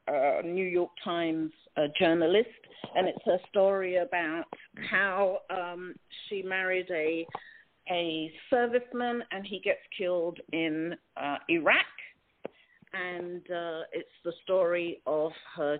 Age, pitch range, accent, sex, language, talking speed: 50-69, 165-225 Hz, British, female, English, 120 wpm